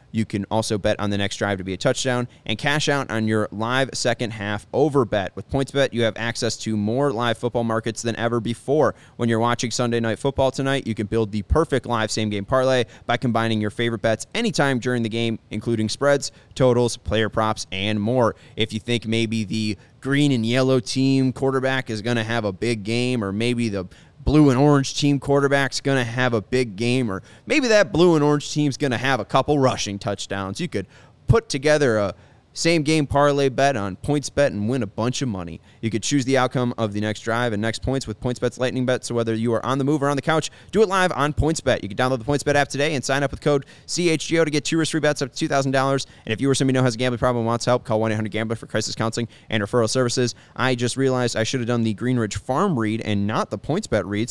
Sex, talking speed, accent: male, 255 wpm, American